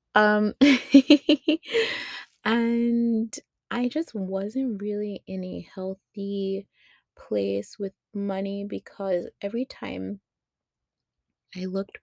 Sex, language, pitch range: female, English, 170-210 Hz